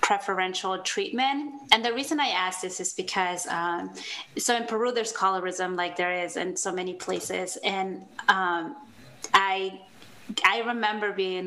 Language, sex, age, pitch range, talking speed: English, female, 20-39, 185-230 Hz, 150 wpm